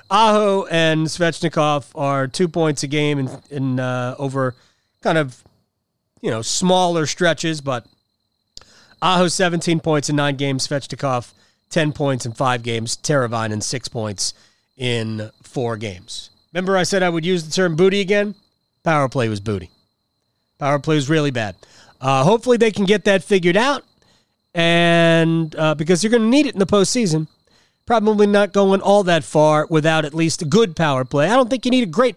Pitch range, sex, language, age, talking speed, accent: 120-175 Hz, male, English, 40-59, 180 wpm, American